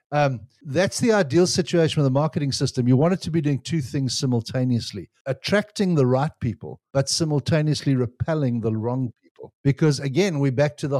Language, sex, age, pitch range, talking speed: English, male, 60-79, 120-150 Hz, 185 wpm